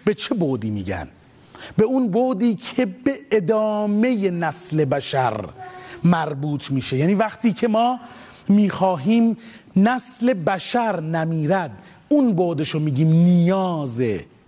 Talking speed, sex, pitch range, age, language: 110 wpm, male, 160-215 Hz, 30-49, Persian